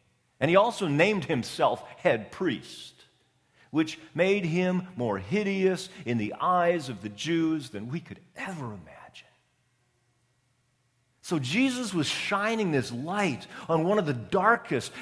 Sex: male